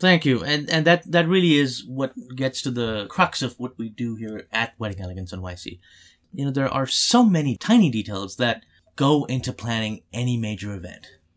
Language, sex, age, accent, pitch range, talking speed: English, male, 30-49, American, 110-165 Hz, 200 wpm